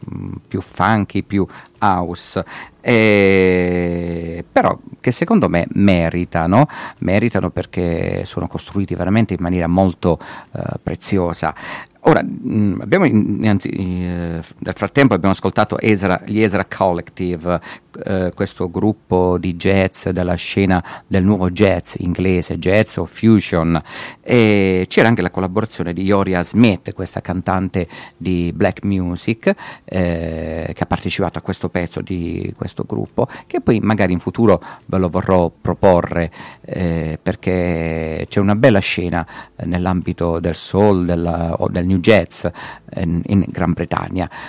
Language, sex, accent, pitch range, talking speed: Italian, male, native, 85-105 Hz, 130 wpm